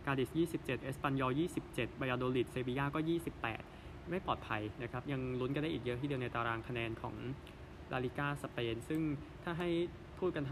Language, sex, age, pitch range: Thai, male, 20-39, 120-150 Hz